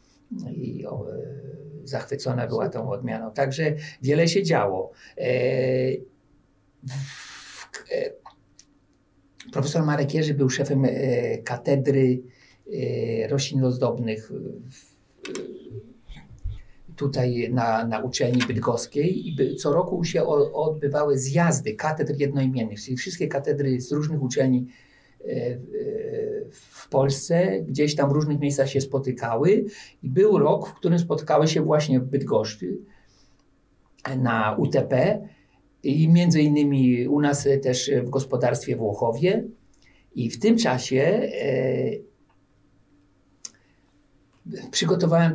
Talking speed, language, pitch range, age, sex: 105 wpm, Polish, 125-150 Hz, 50-69, male